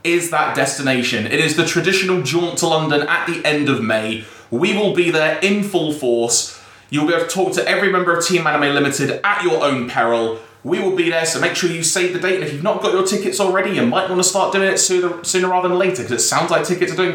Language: English